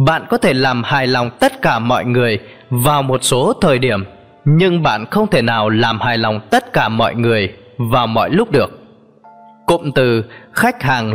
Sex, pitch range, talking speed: male, 115-175 Hz, 190 wpm